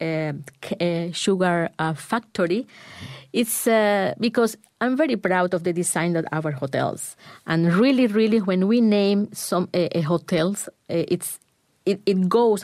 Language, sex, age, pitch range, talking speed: English, female, 30-49, 155-205 Hz, 145 wpm